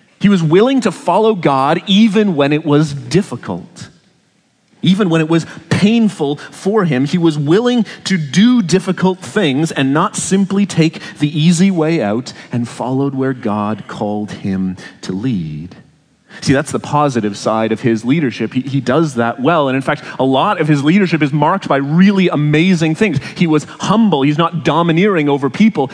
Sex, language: male, English